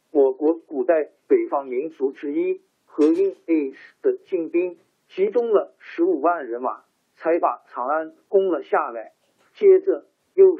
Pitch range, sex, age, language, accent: 315-400 Hz, male, 50-69, Chinese, native